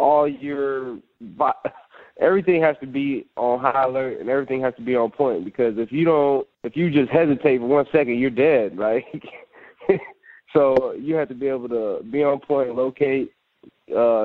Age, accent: 20-39, American